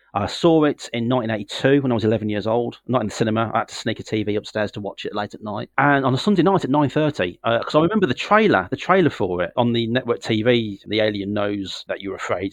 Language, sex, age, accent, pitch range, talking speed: English, male, 30-49, British, 105-130 Hz, 265 wpm